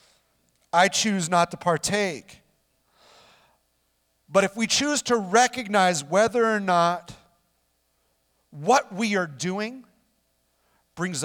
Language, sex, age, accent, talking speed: English, male, 40-59, American, 100 wpm